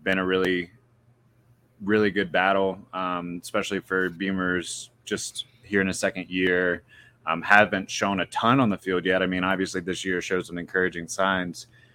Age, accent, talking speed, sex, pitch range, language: 20-39, American, 170 wpm, male, 90-115 Hz, English